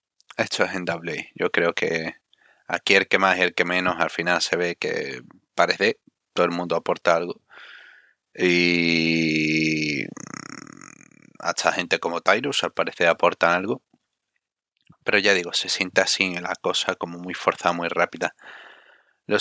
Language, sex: Spanish, male